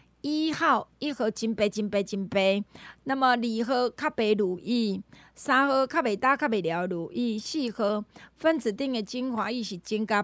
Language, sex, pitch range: Chinese, female, 200-265 Hz